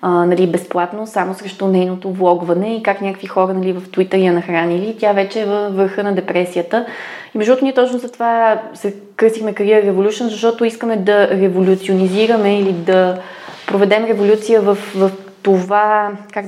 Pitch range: 190-220 Hz